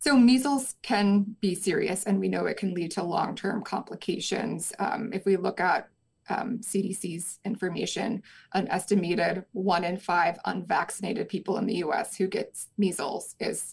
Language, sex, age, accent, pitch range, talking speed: English, female, 20-39, American, 190-210 Hz, 160 wpm